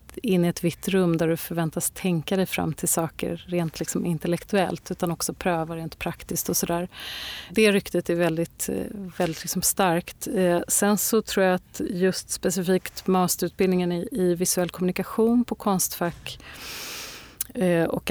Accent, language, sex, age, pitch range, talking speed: native, Swedish, female, 30-49, 165-190 Hz, 155 wpm